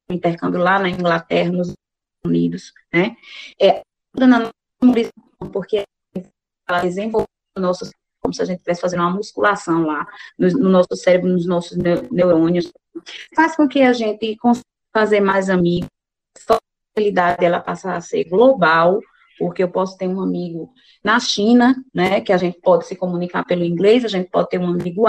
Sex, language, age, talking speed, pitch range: female, Portuguese, 20-39, 165 wpm, 180-230 Hz